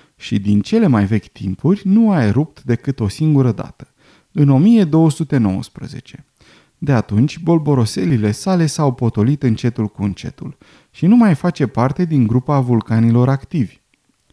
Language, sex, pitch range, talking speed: Romanian, male, 115-165 Hz, 140 wpm